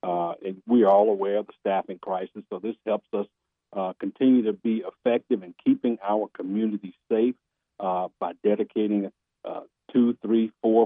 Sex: male